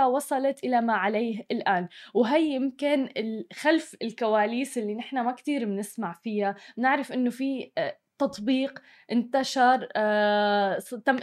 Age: 20-39